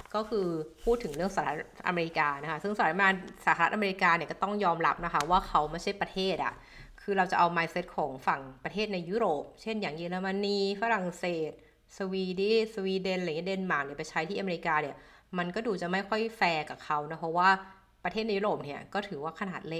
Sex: female